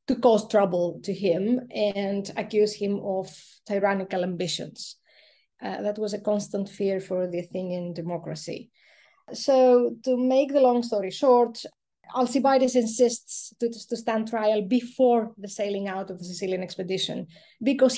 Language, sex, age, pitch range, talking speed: English, female, 20-39, 195-250 Hz, 140 wpm